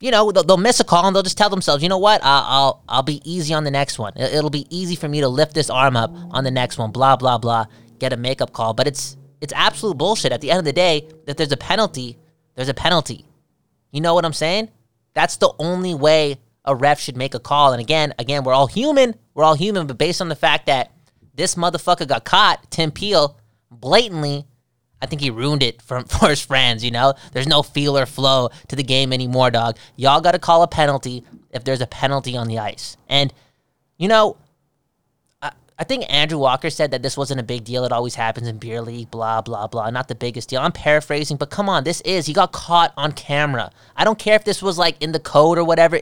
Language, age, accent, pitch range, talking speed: English, 20-39, American, 125-160 Hz, 240 wpm